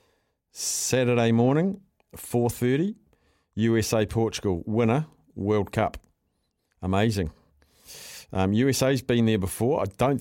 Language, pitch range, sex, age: English, 95-120 Hz, male, 50-69